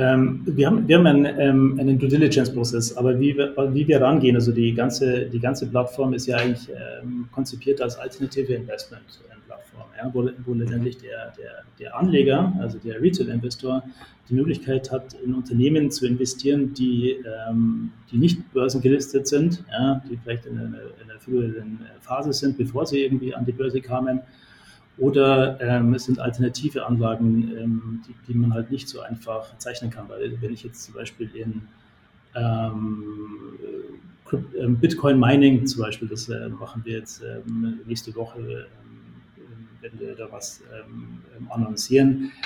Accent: German